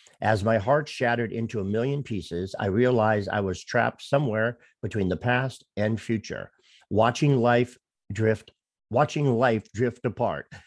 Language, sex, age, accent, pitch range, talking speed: English, male, 50-69, American, 105-130 Hz, 145 wpm